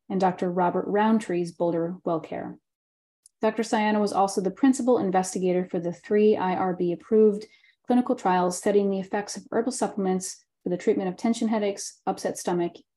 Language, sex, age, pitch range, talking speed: English, female, 30-49, 185-220 Hz, 155 wpm